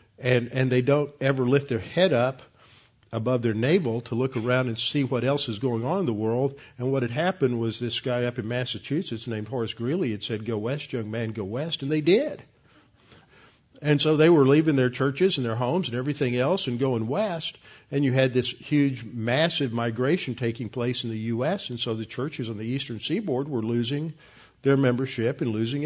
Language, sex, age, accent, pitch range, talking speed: English, male, 50-69, American, 110-135 Hz, 210 wpm